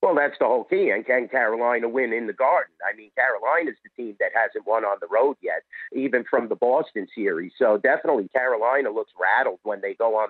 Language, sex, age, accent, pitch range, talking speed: English, male, 50-69, American, 115-175 Hz, 220 wpm